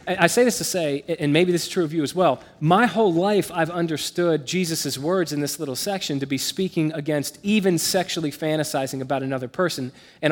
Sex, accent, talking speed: male, American, 210 wpm